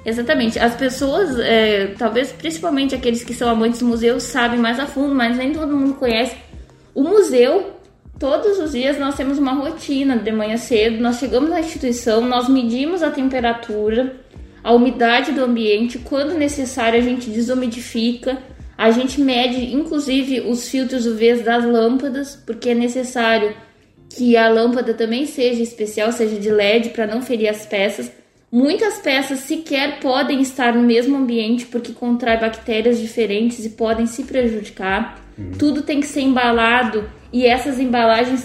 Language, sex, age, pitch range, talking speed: Portuguese, female, 10-29, 230-270 Hz, 155 wpm